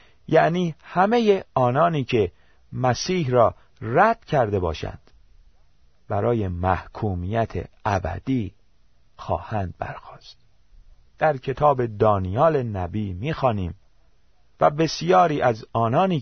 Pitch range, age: 90-140 Hz, 40-59